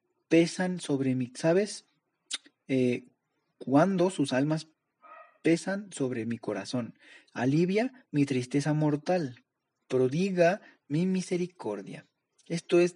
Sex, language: male, Spanish